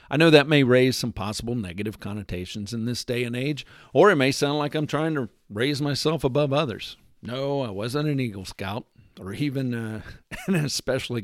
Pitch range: 105-155 Hz